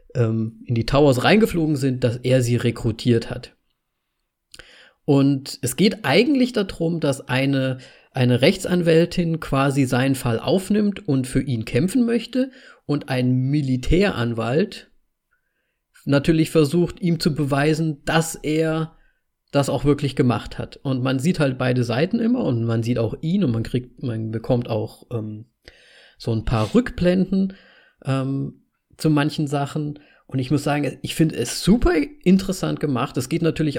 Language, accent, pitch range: German, German, 125-160 Hz